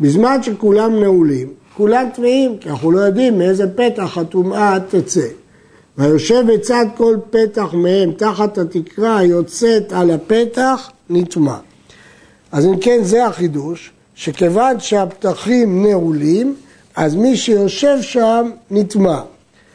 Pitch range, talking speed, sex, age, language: 170-225 Hz, 110 wpm, male, 60-79, Hebrew